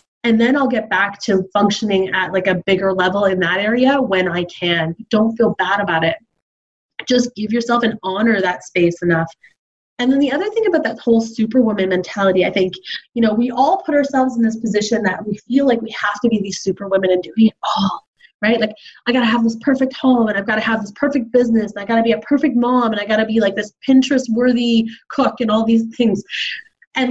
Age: 20-39